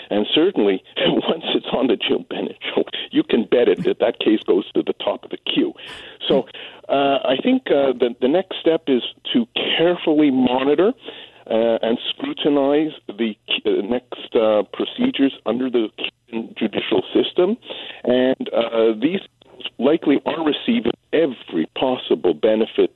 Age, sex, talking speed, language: 50-69, male, 145 wpm, English